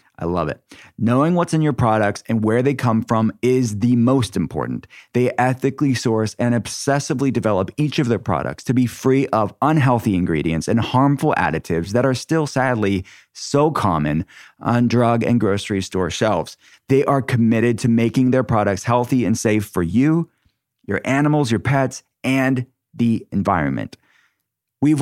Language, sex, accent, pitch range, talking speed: English, male, American, 105-130 Hz, 165 wpm